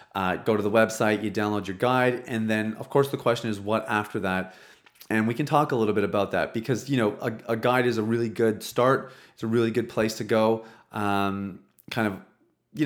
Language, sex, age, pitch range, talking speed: English, male, 30-49, 105-135 Hz, 235 wpm